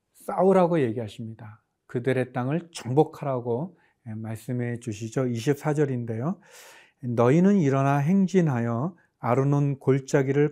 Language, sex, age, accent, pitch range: Korean, male, 40-59, native, 120-155 Hz